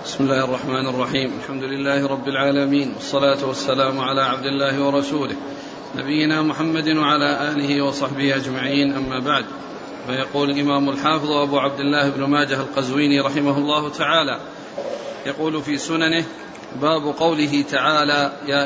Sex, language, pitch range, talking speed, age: male, Arabic, 140-165 Hz, 130 wpm, 40-59